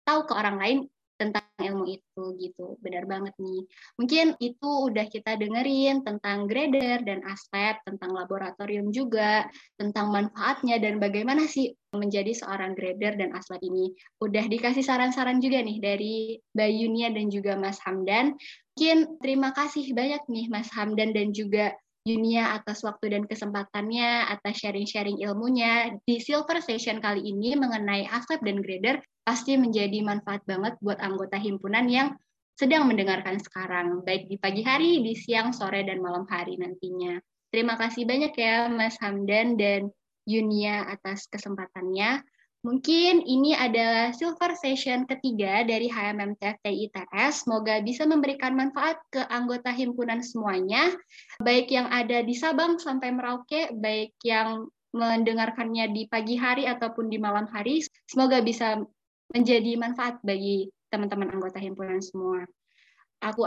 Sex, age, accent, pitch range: female, 20-39, native, 200-255 Hz